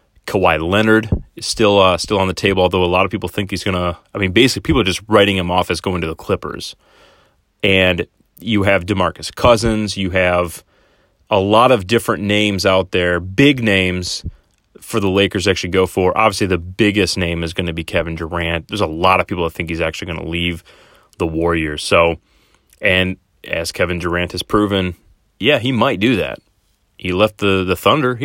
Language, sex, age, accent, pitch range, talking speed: English, male, 30-49, American, 85-105 Hz, 205 wpm